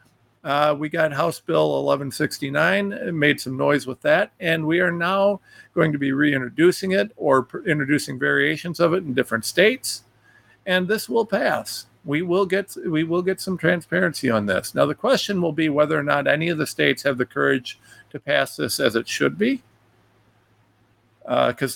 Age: 50-69